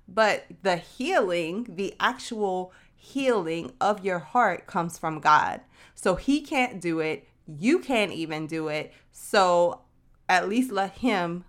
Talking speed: 140 wpm